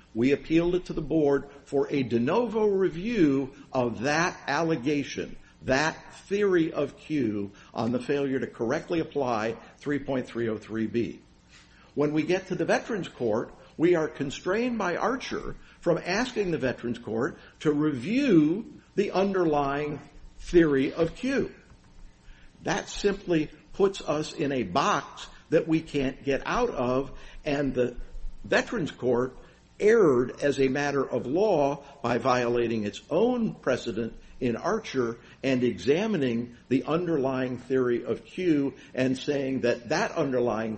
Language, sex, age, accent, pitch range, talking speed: English, male, 50-69, American, 120-165 Hz, 135 wpm